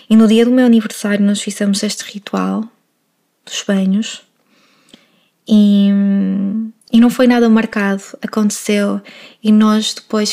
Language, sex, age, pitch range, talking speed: Portuguese, female, 20-39, 195-220 Hz, 130 wpm